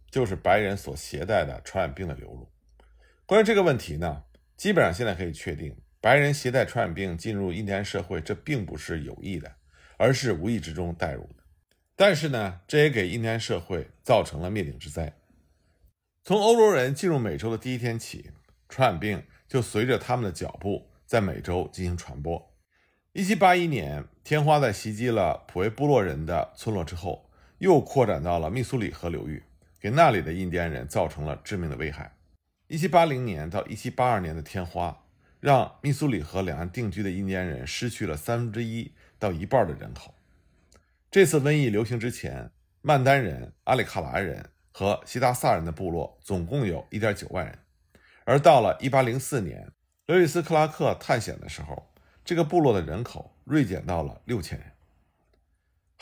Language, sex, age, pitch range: Chinese, male, 50-69, 80-125 Hz